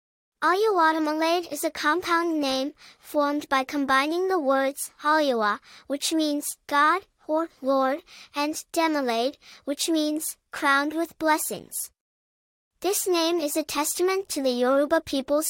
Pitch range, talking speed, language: 275-325 Hz, 125 wpm, English